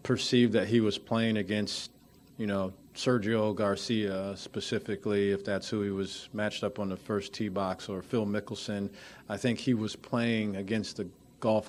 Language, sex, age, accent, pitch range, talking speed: English, male, 40-59, American, 105-120 Hz, 175 wpm